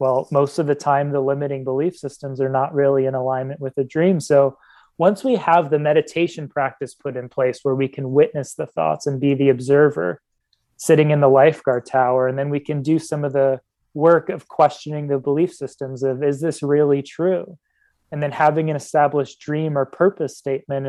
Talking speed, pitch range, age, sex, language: 200 wpm, 135-150 Hz, 20-39, male, English